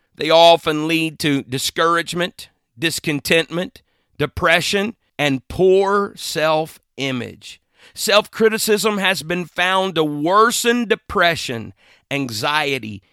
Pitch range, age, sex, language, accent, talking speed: 125-190 Hz, 40-59, male, English, American, 80 wpm